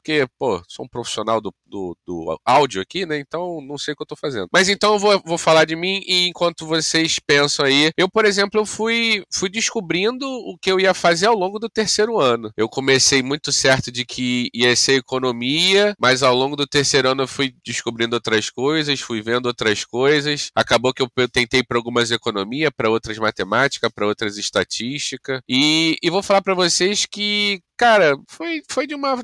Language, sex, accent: Portuguese, male, Brazilian